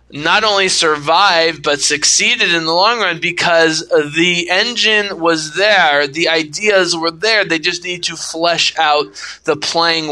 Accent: American